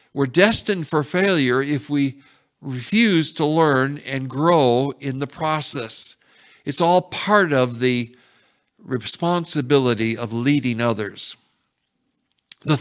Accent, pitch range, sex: American, 130-170 Hz, male